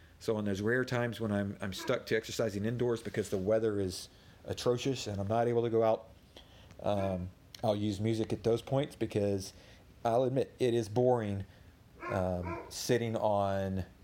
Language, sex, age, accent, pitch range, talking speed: English, male, 40-59, American, 95-115 Hz, 170 wpm